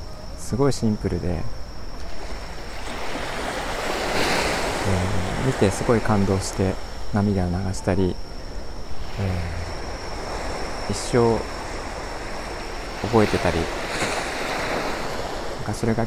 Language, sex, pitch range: Japanese, male, 90-115 Hz